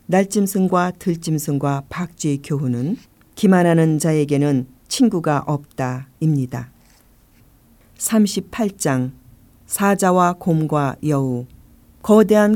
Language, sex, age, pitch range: Korean, female, 50-69, 130-180 Hz